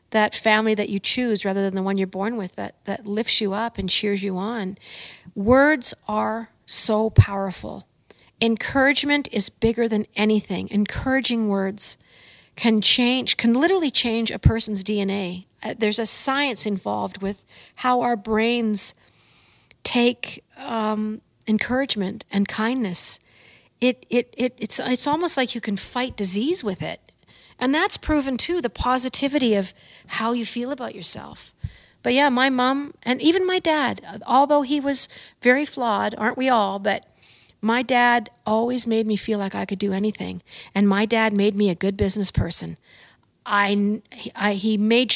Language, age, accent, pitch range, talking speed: English, 40-59, American, 200-245 Hz, 155 wpm